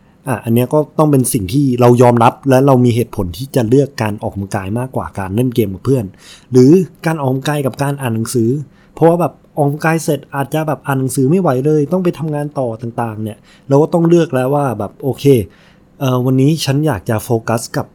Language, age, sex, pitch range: Thai, 20-39, male, 115-145 Hz